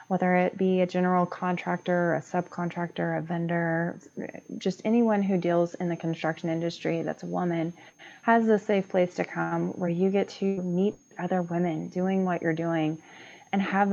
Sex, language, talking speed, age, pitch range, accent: female, English, 170 wpm, 20-39, 165-190 Hz, American